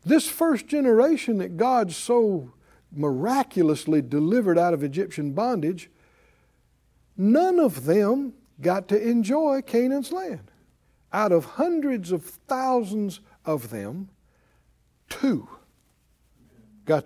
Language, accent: English, American